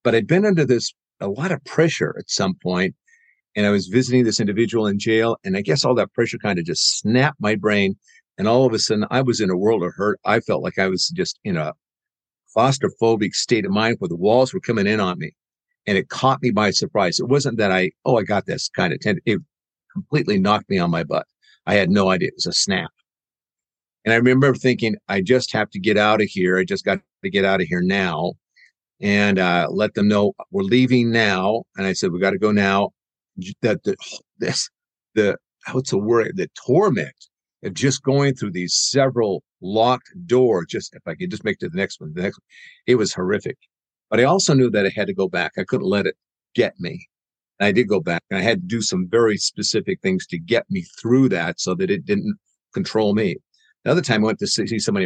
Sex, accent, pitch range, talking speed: male, American, 100-140 Hz, 240 wpm